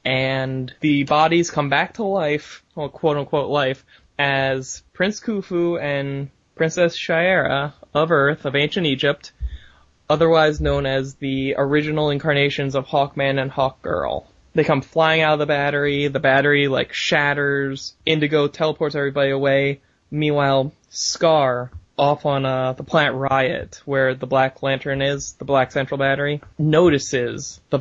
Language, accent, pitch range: English, American, 135-150 Hz